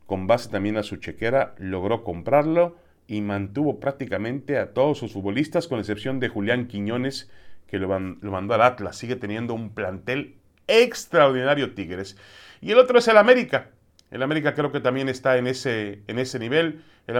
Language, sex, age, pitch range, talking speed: Spanish, male, 40-59, 100-150 Hz, 180 wpm